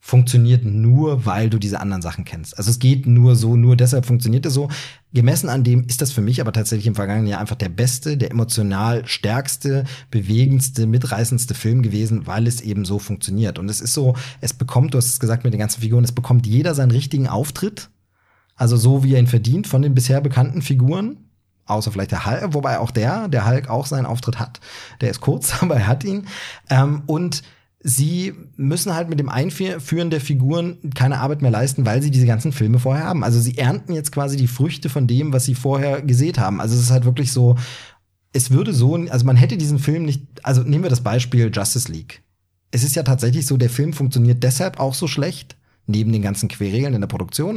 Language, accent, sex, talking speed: German, German, male, 215 wpm